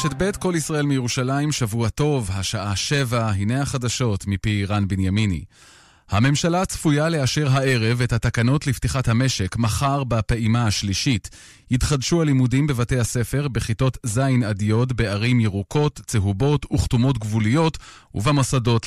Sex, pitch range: male, 110-135 Hz